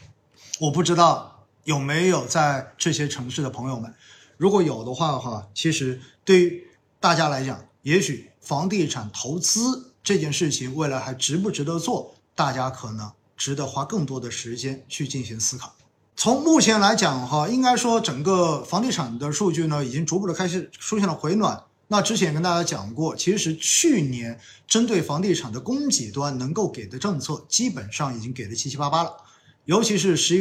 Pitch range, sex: 130-185 Hz, male